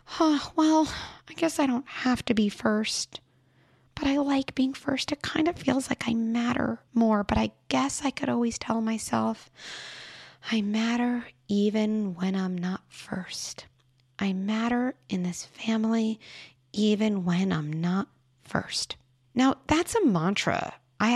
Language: English